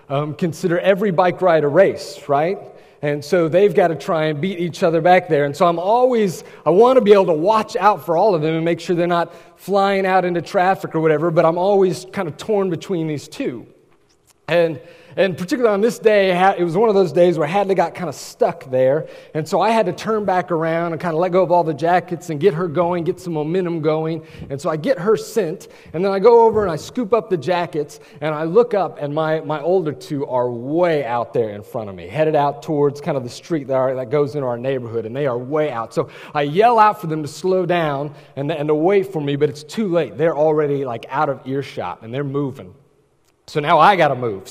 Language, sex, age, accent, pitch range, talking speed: English, male, 30-49, American, 150-190 Hz, 250 wpm